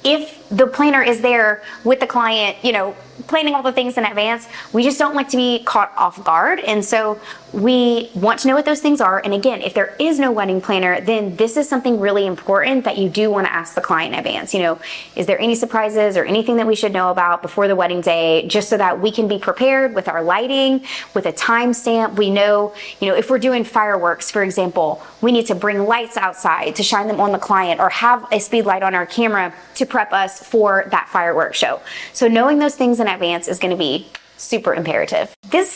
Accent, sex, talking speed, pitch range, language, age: American, female, 235 wpm, 190-245 Hz, English, 20-39